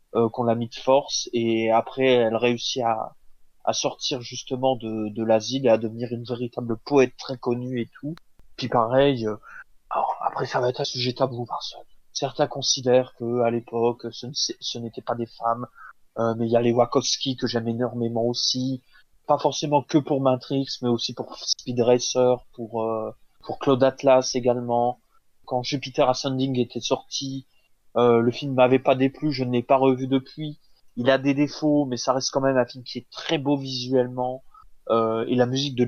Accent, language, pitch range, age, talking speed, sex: French, French, 120-140 Hz, 20-39, 190 wpm, male